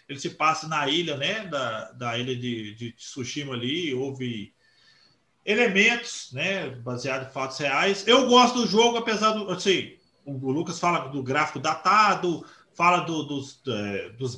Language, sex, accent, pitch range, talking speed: Portuguese, male, Brazilian, 155-235 Hz, 145 wpm